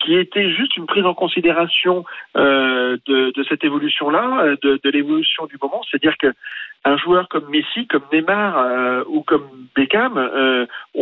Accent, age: French, 50-69